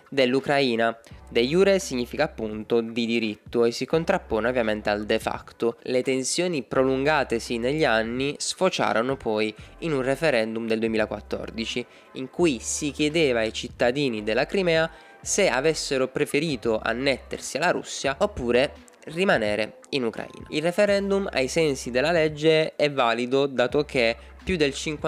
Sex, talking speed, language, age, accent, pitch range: male, 135 wpm, Italian, 20-39, native, 115-160 Hz